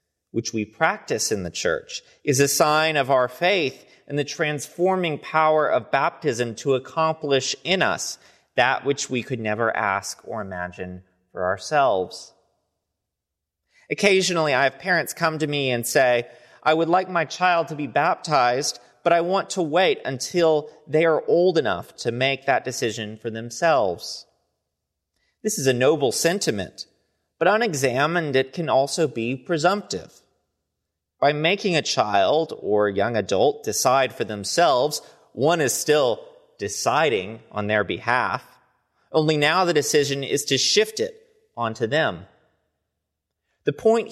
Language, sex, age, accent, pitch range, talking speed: English, male, 30-49, American, 115-170 Hz, 145 wpm